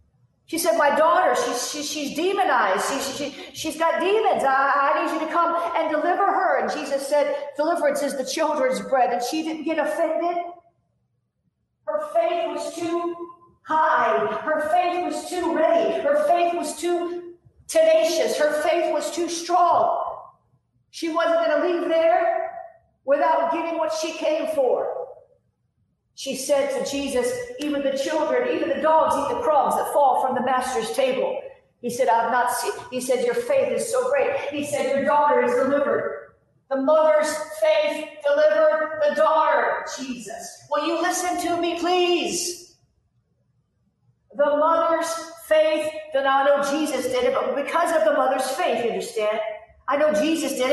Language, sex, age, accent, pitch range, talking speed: English, female, 50-69, American, 285-340 Hz, 160 wpm